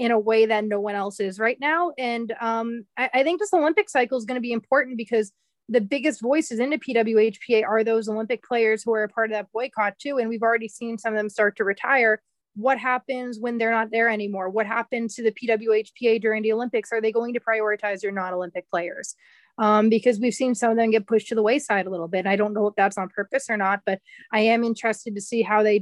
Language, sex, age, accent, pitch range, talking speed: English, female, 20-39, American, 210-250 Hz, 245 wpm